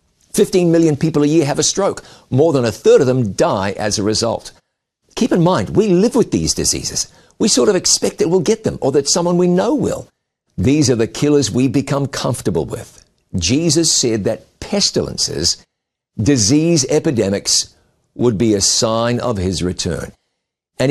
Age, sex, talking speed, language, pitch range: 50-69, male, 180 wpm, English, 110-150 Hz